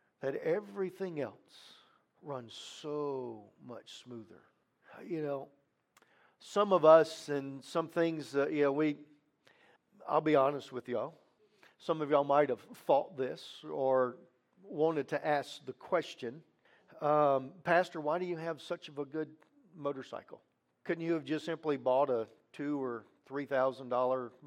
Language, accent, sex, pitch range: English, American, male, 135-165 Hz